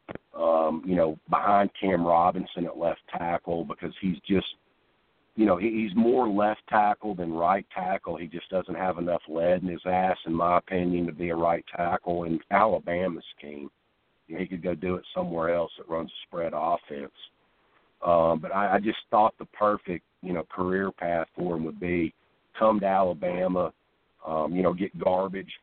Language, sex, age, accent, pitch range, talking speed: English, male, 50-69, American, 85-95 Hz, 180 wpm